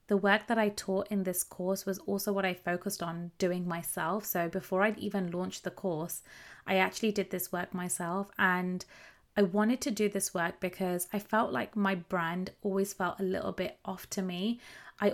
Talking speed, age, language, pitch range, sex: 200 wpm, 30-49, English, 180-205 Hz, female